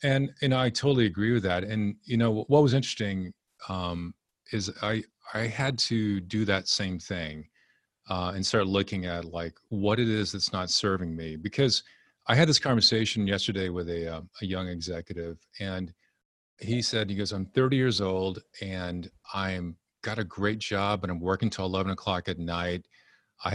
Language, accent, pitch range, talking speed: English, American, 95-115 Hz, 185 wpm